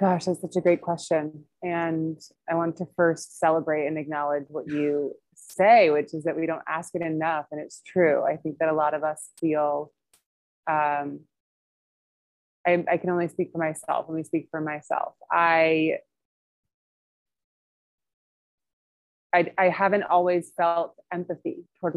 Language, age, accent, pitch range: English, 20-39, American, 155-180 Hz